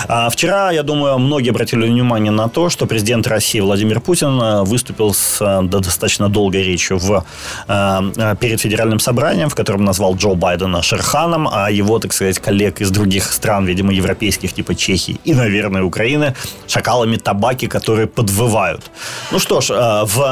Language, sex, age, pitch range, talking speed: Ukrainian, male, 30-49, 100-135 Hz, 150 wpm